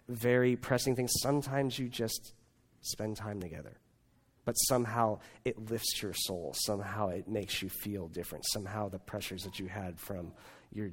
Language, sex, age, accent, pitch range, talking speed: English, male, 30-49, American, 100-120 Hz, 160 wpm